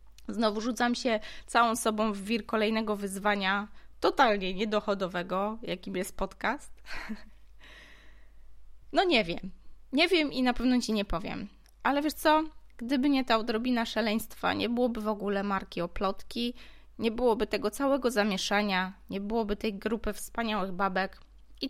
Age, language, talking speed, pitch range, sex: 20-39, Polish, 145 wpm, 195-245 Hz, female